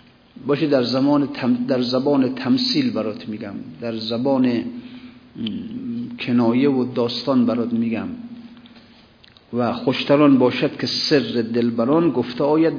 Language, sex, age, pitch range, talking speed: Persian, male, 50-69, 120-185 Hz, 110 wpm